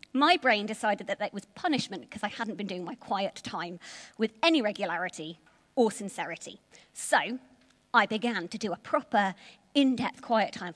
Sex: female